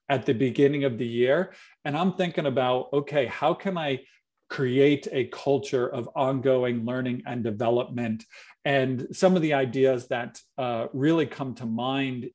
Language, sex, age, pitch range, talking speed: English, male, 40-59, 125-155 Hz, 160 wpm